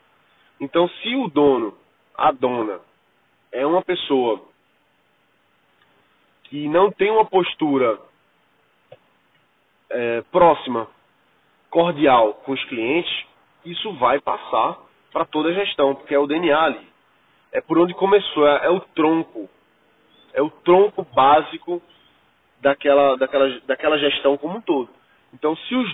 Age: 20-39